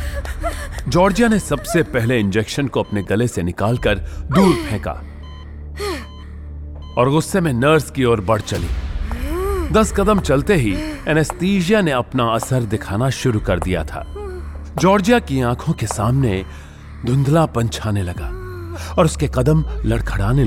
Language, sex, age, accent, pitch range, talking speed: Hindi, male, 30-49, native, 100-160 Hz, 130 wpm